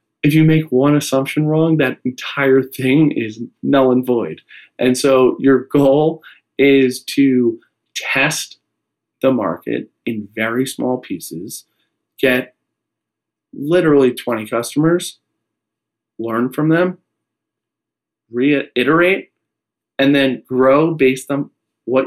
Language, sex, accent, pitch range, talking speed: English, male, American, 115-145 Hz, 110 wpm